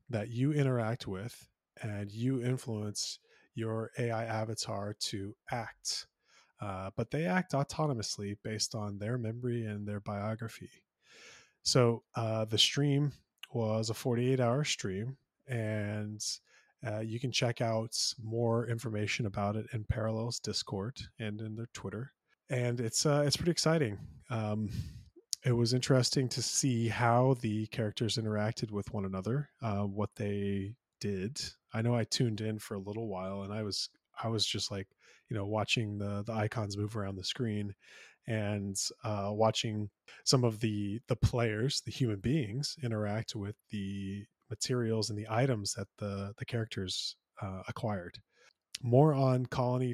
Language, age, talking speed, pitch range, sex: English, 20-39, 150 wpm, 105-125 Hz, male